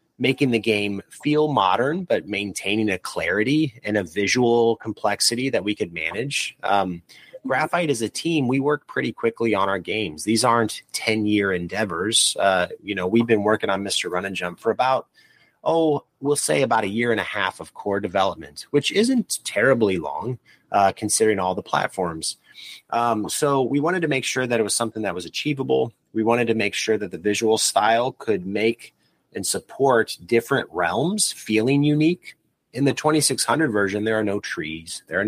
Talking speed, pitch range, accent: 185 wpm, 100-125 Hz, American